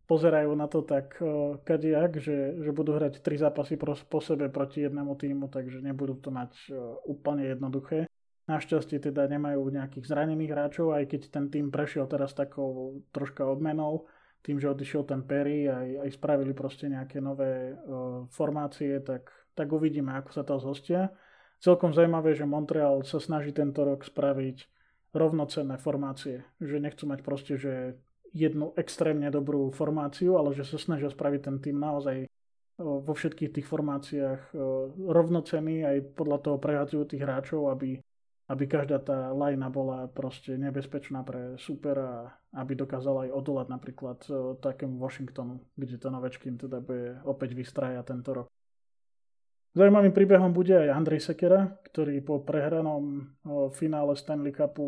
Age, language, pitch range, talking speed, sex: 20-39, Slovak, 135-150 Hz, 150 wpm, male